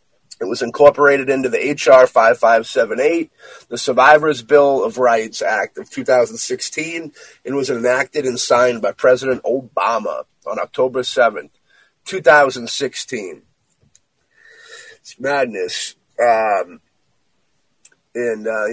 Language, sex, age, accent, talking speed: English, male, 30-49, American, 120 wpm